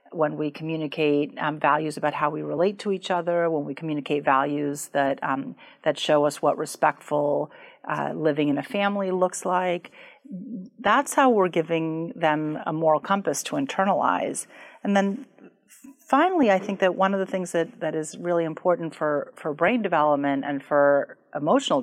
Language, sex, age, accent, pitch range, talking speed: English, female, 40-59, American, 150-195 Hz, 170 wpm